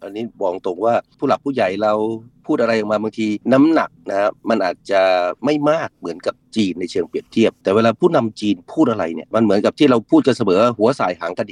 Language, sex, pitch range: Thai, male, 110-140 Hz